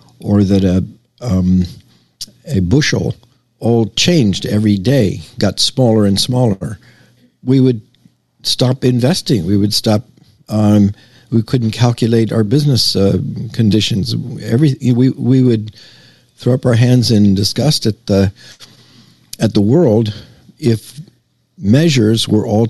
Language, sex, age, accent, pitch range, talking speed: English, male, 60-79, American, 100-125 Hz, 125 wpm